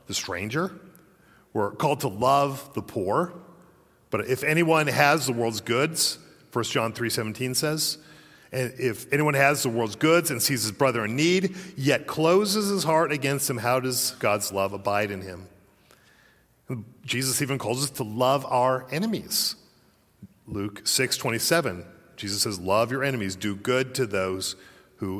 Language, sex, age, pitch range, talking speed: English, male, 40-59, 105-140 Hz, 160 wpm